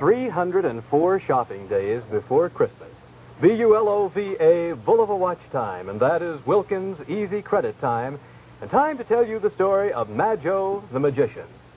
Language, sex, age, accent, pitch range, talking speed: English, male, 60-79, American, 155-245 Hz, 140 wpm